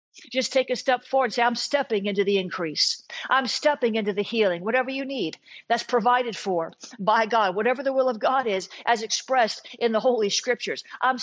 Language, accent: English, American